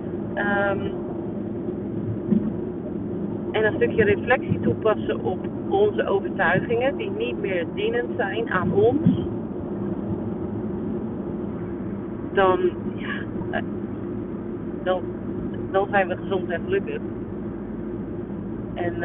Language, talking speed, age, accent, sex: Dutch, 80 wpm, 40-59, Dutch, female